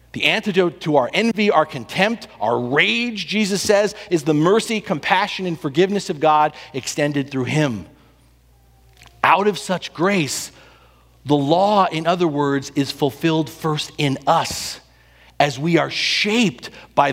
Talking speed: 145 wpm